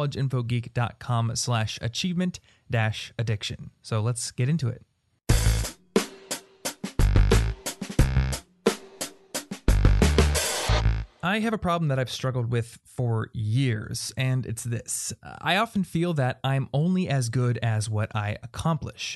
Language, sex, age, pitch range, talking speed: English, male, 20-39, 110-135 Hz, 110 wpm